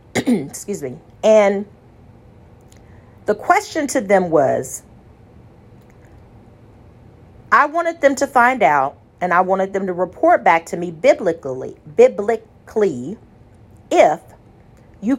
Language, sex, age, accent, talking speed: English, female, 40-59, American, 105 wpm